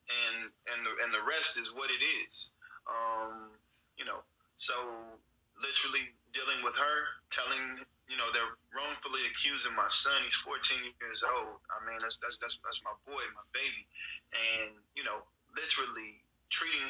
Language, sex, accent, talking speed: English, male, American, 160 wpm